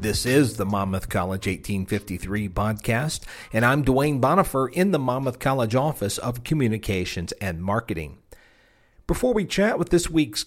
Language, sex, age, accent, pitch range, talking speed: English, male, 50-69, American, 95-135 Hz, 150 wpm